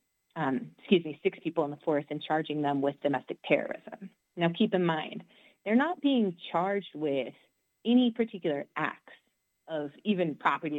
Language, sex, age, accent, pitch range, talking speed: English, female, 30-49, American, 150-200 Hz, 160 wpm